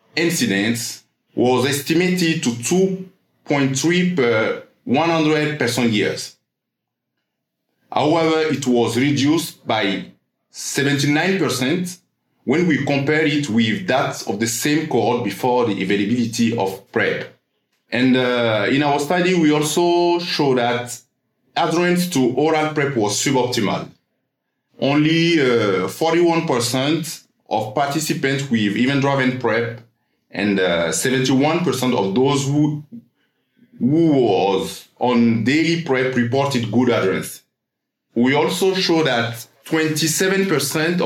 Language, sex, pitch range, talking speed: English, male, 120-160 Hz, 105 wpm